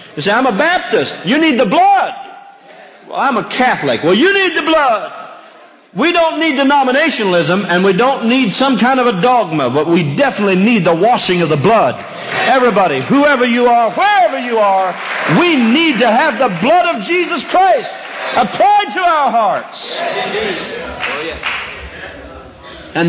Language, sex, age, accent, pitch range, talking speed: English, male, 50-69, American, 200-295 Hz, 160 wpm